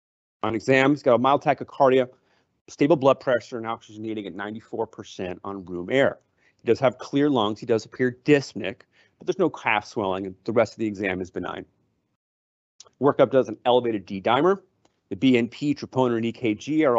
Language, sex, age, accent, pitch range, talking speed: English, male, 30-49, American, 110-145 Hz, 175 wpm